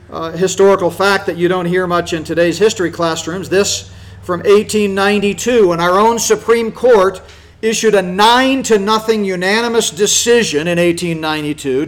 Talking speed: 135 wpm